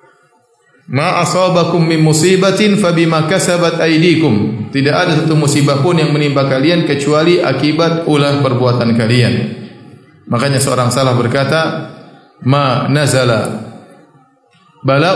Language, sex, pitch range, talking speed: Indonesian, male, 135-165 Hz, 105 wpm